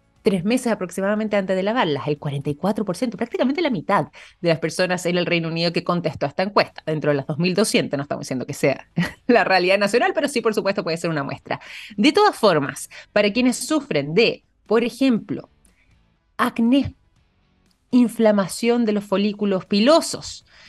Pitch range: 170-225 Hz